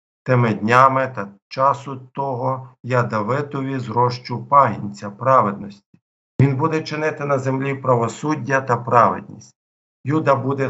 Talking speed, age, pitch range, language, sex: 110 wpm, 50-69, 110-135 Hz, Ukrainian, male